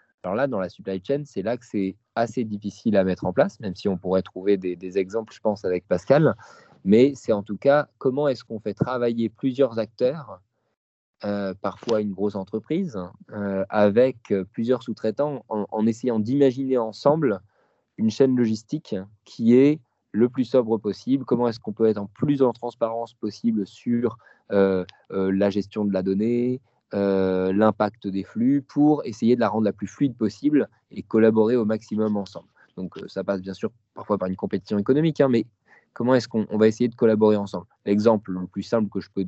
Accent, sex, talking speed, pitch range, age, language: French, male, 195 wpm, 100-120 Hz, 20-39, French